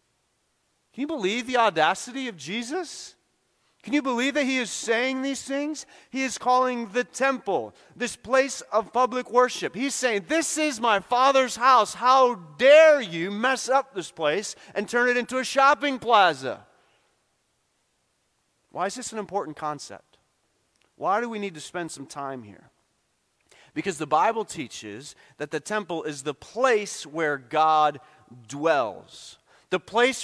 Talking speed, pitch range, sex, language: 155 wpm, 180-255 Hz, male, English